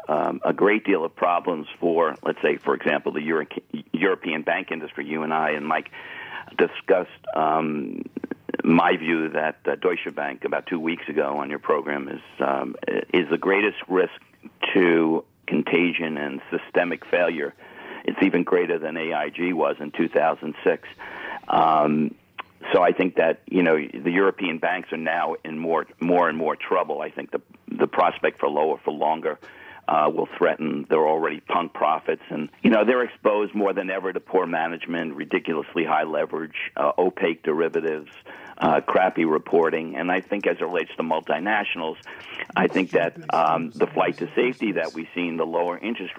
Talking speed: 175 wpm